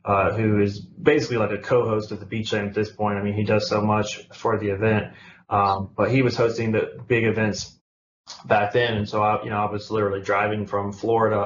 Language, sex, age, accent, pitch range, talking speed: English, male, 20-39, American, 100-110 Hz, 225 wpm